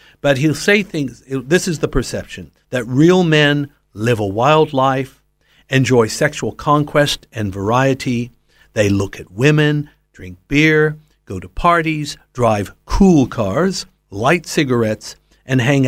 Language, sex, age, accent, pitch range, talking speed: English, male, 60-79, American, 115-155 Hz, 135 wpm